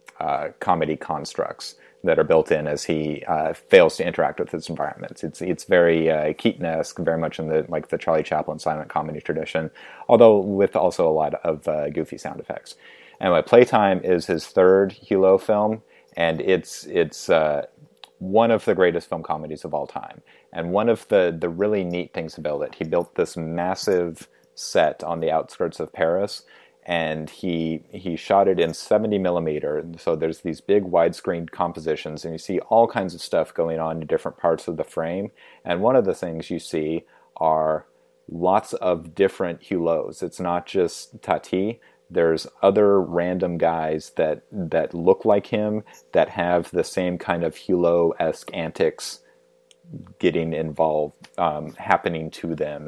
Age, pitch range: 30-49, 80-95 Hz